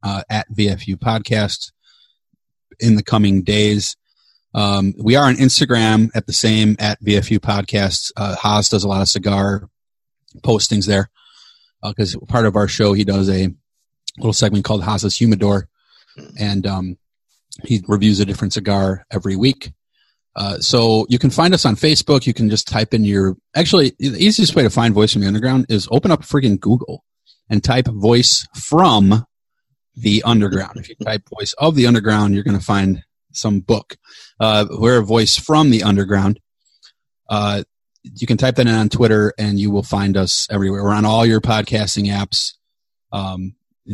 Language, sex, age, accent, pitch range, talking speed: English, male, 30-49, American, 100-115 Hz, 175 wpm